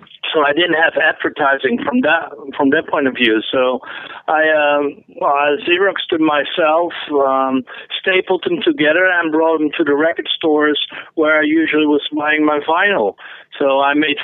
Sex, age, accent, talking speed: male, 50-69, American, 160 wpm